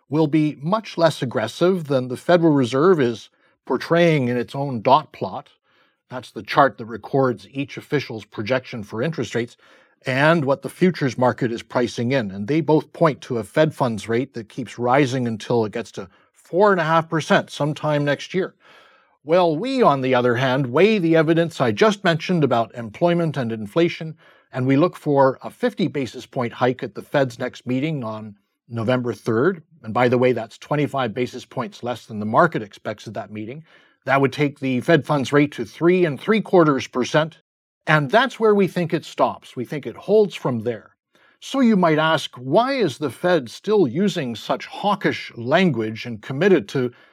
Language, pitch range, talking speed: English, 125-170 Hz, 185 wpm